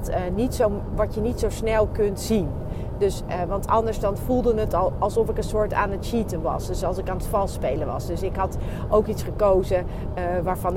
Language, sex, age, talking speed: Dutch, female, 40-59, 205 wpm